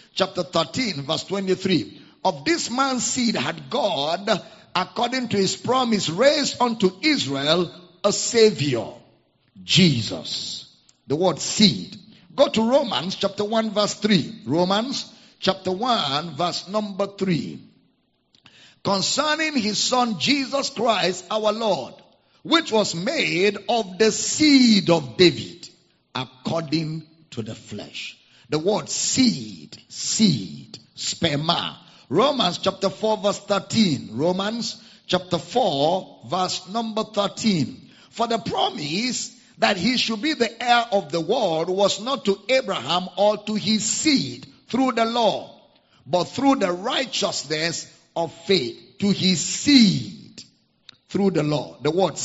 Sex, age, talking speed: male, 50-69, 125 wpm